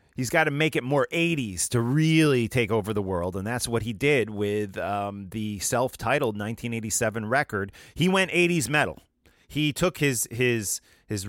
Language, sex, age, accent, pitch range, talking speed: English, male, 30-49, American, 105-145 Hz, 175 wpm